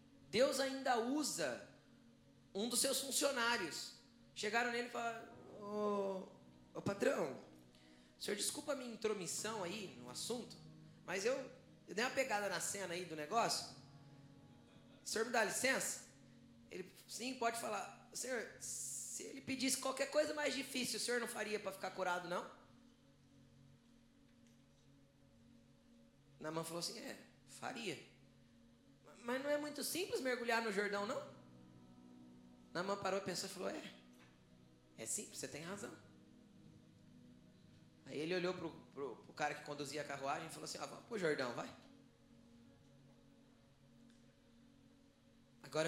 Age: 20-39